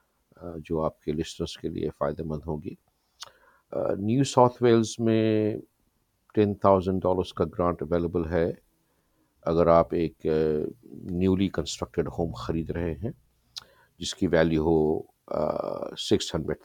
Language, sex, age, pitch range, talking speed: Urdu, male, 50-69, 80-95 Hz, 125 wpm